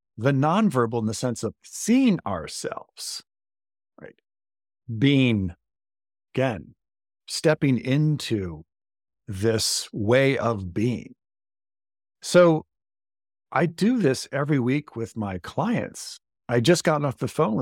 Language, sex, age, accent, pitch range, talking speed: English, male, 40-59, American, 115-170 Hz, 110 wpm